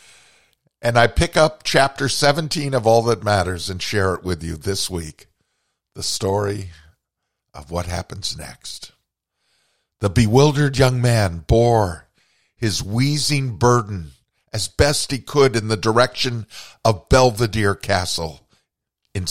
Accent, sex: American, male